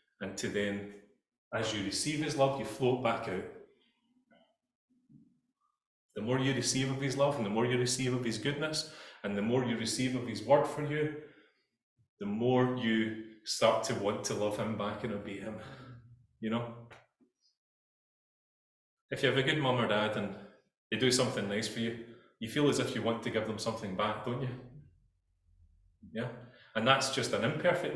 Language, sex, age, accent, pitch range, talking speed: English, male, 30-49, British, 115-145 Hz, 185 wpm